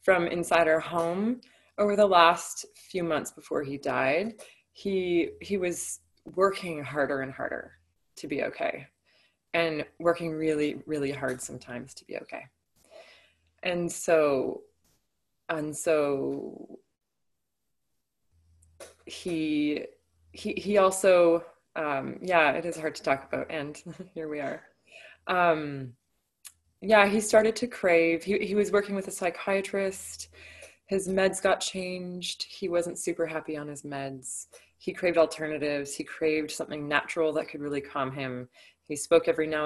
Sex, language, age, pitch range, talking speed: female, English, 20-39, 140-175 Hz, 140 wpm